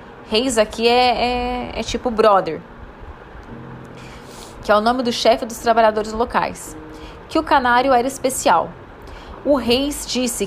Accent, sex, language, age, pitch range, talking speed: Brazilian, female, Portuguese, 20-39, 205-255 Hz, 140 wpm